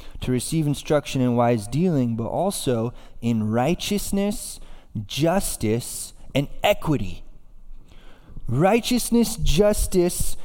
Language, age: English, 20-39